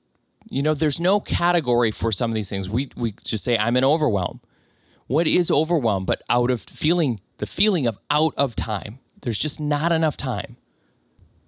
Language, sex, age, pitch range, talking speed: English, male, 20-39, 115-150 Hz, 185 wpm